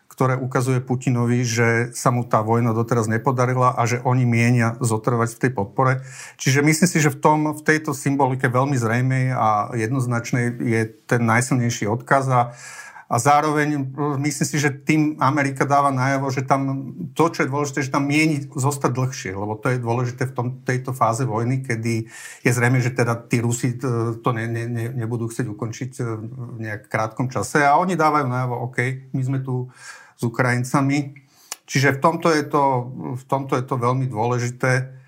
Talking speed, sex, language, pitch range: 180 wpm, male, Slovak, 115-140 Hz